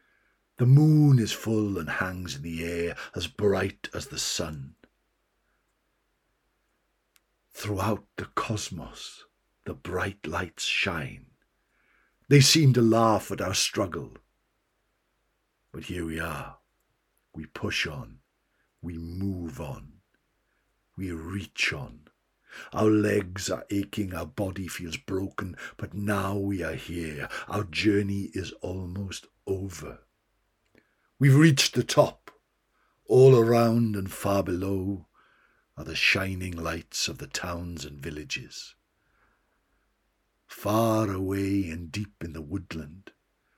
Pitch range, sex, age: 80-105 Hz, male, 60-79